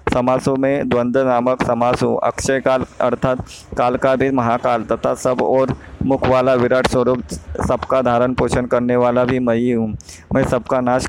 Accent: native